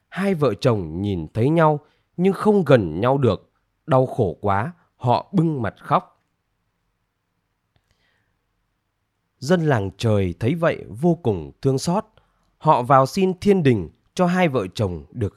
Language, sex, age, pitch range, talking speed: Vietnamese, male, 20-39, 100-155 Hz, 145 wpm